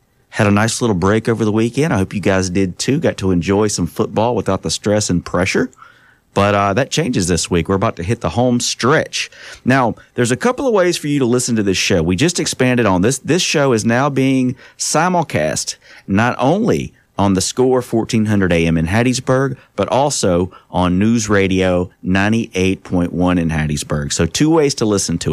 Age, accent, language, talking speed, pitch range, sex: 30-49, American, English, 200 wpm, 90-120 Hz, male